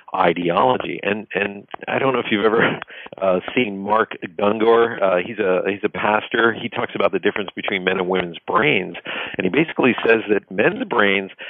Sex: male